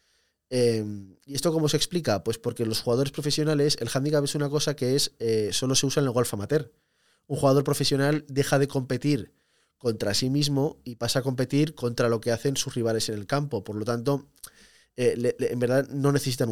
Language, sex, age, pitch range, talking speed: Spanish, male, 20-39, 115-145 Hz, 205 wpm